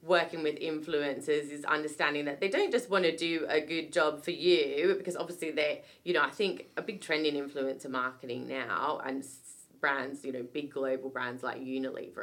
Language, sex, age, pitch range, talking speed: English, female, 20-39, 130-160 Hz, 195 wpm